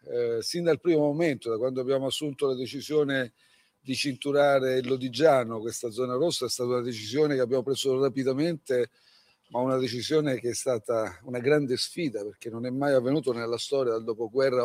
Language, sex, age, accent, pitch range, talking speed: Italian, male, 50-69, native, 120-140 Hz, 180 wpm